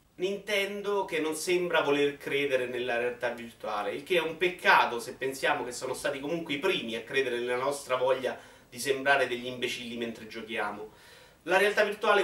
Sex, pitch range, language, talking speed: male, 115-160 Hz, Italian, 175 wpm